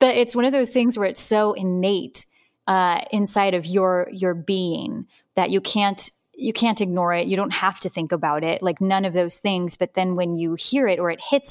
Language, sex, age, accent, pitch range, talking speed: English, female, 10-29, American, 170-200 Hz, 230 wpm